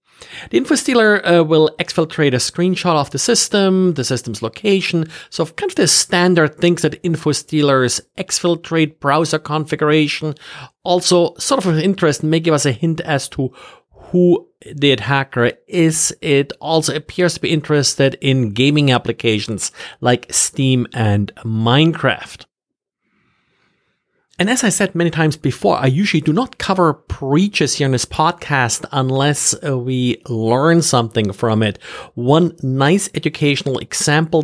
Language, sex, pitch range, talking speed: English, male, 130-170 Hz, 140 wpm